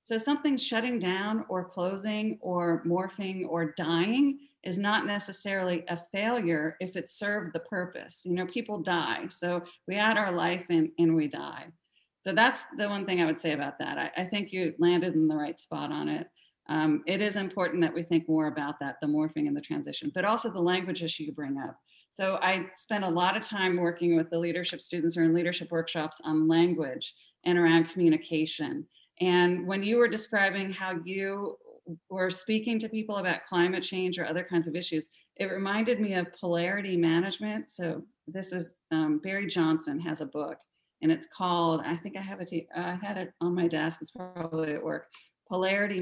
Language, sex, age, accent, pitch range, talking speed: English, female, 30-49, American, 165-200 Hz, 200 wpm